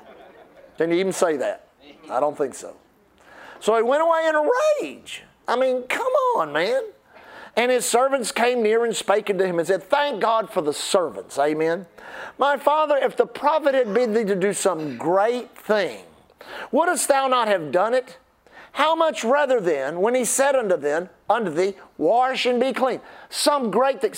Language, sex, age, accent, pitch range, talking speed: English, male, 50-69, American, 205-275 Hz, 185 wpm